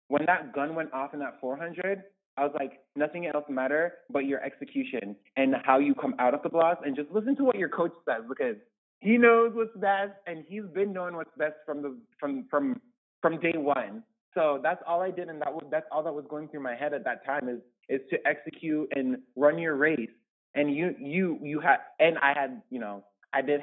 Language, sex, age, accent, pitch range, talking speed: English, male, 20-39, American, 135-180 Hz, 230 wpm